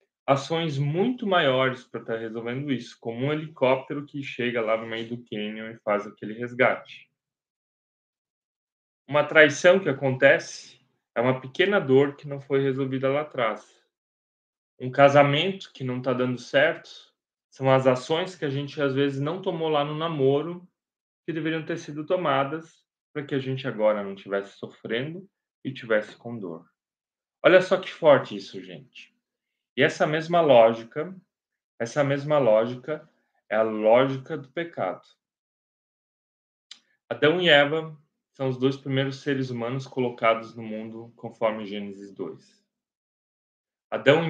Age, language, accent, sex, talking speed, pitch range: 20-39, Portuguese, Brazilian, male, 145 wpm, 120-155 Hz